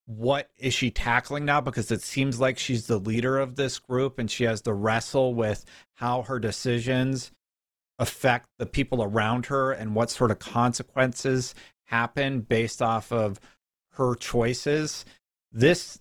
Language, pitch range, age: English, 115-140 Hz, 40-59